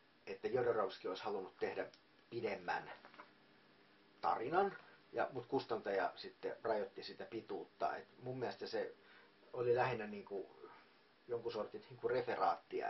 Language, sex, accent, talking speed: Finnish, male, native, 115 wpm